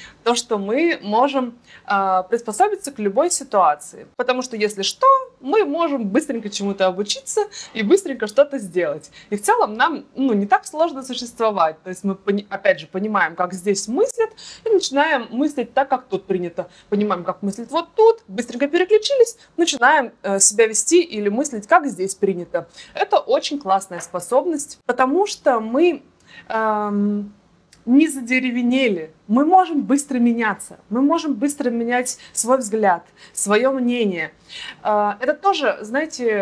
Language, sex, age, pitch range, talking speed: Russian, female, 20-39, 205-280 Hz, 145 wpm